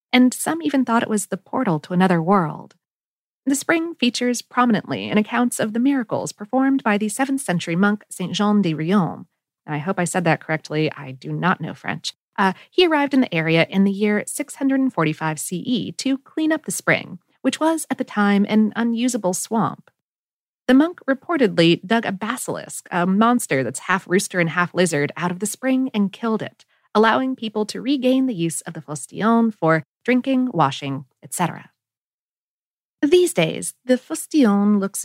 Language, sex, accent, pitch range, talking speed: English, female, American, 170-245 Hz, 185 wpm